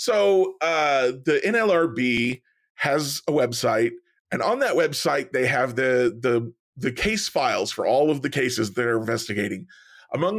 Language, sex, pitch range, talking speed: English, male, 125-180 Hz, 170 wpm